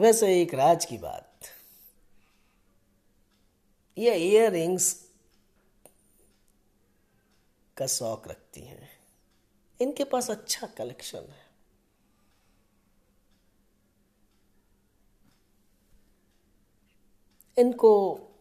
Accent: native